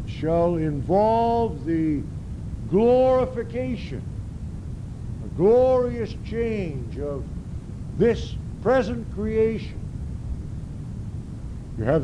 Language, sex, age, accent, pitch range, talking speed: English, male, 60-79, American, 145-210 Hz, 65 wpm